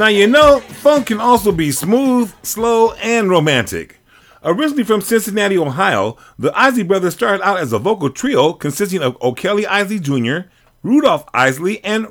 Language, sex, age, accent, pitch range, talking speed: English, male, 40-59, American, 155-230 Hz, 160 wpm